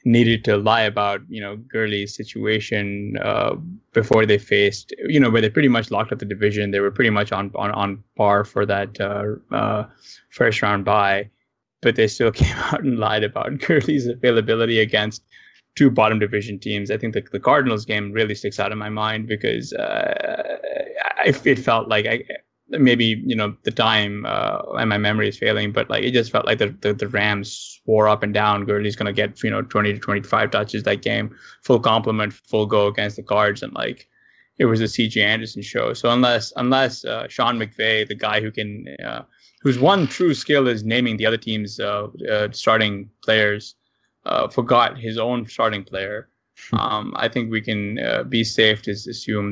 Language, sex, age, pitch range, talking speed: English, male, 10-29, 105-120 Hz, 200 wpm